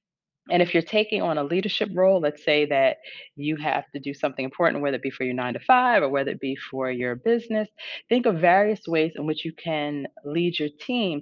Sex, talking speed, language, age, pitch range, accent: female, 230 wpm, English, 30-49, 145-185 Hz, American